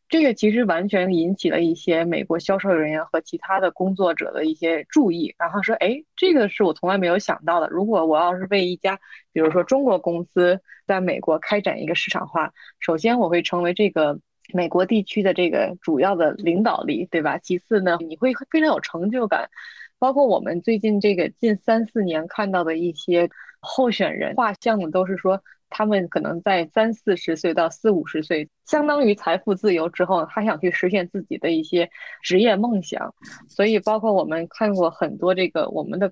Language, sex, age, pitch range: Chinese, female, 20-39, 175-215 Hz